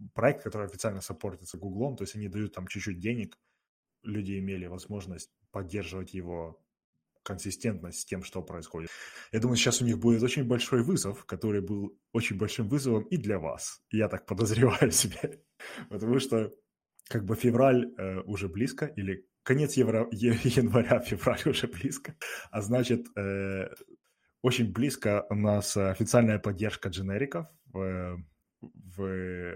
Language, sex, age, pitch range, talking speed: Russian, male, 20-39, 95-115 Hz, 145 wpm